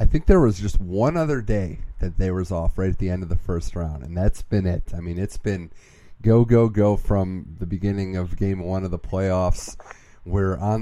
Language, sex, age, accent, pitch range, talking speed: English, male, 30-49, American, 90-105 Hz, 235 wpm